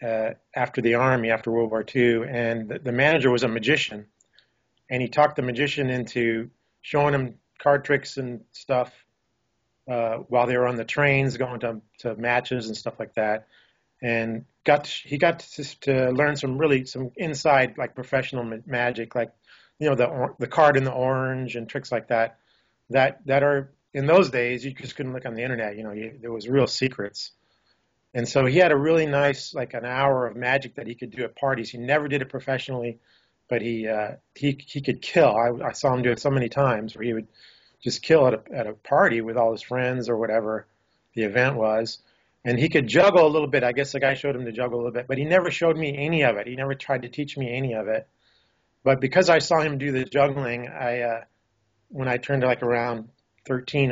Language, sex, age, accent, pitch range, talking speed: English, male, 30-49, American, 115-140 Hz, 225 wpm